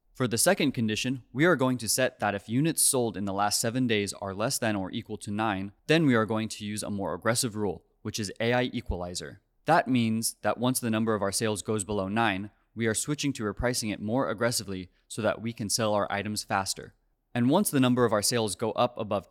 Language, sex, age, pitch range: English, male, 20-39, 105-125 Hz